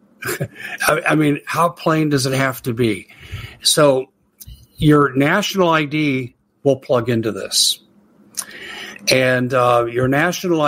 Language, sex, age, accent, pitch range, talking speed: English, male, 60-79, American, 120-140 Hz, 120 wpm